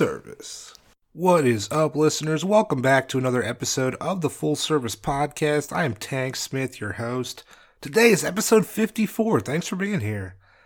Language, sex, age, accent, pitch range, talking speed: English, male, 30-49, American, 135-175 Hz, 165 wpm